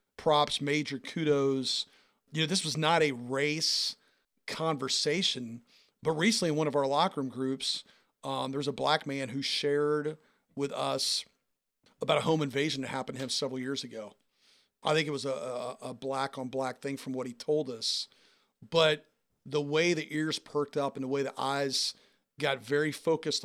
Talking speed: 175 wpm